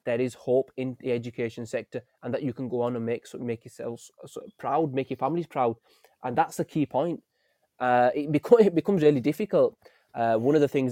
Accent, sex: British, male